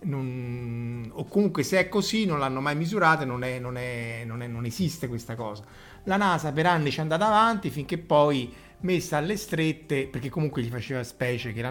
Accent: native